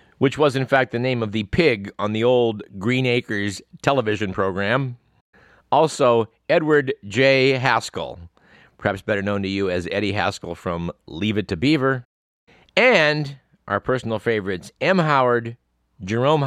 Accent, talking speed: American, 145 wpm